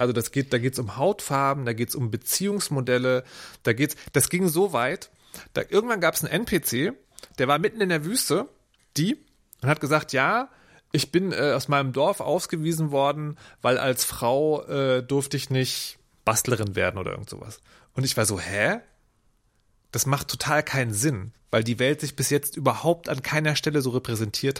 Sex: male